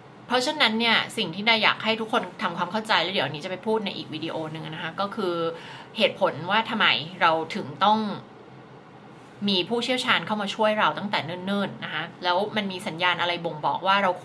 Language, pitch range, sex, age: Thai, 165-225 Hz, female, 20-39